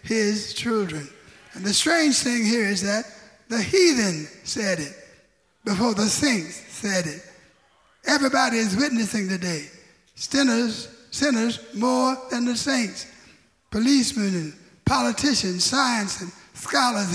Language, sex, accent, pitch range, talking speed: English, male, American, 210-265 Hz, 120 wpm